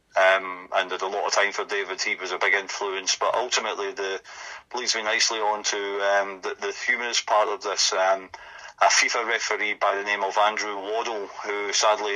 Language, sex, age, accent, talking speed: English, male, 40-59, British, 200 wpm